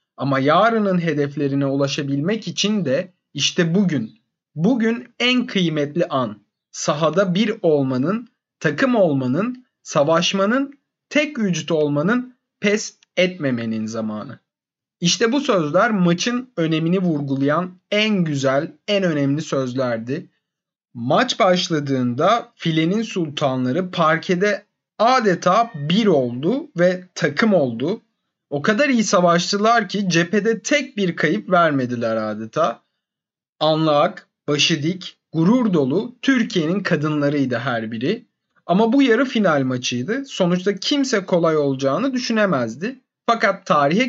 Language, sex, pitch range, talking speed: Turkish, male, 145-225 Hz, 105 wpm